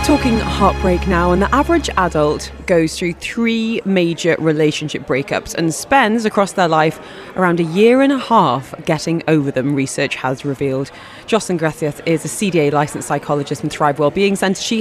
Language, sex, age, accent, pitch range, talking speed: English, female, 30-49, British, 165-230 Hz, 170 wpm